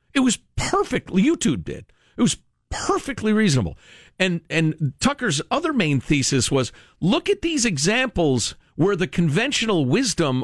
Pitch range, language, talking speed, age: 150-235 Hz, English, 140 wpm, 50-69